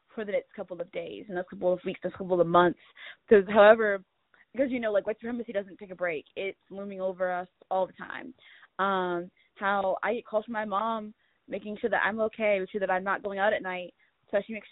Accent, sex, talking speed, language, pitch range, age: American, female, 240 wpm, English, 190-225 Hz, 10-29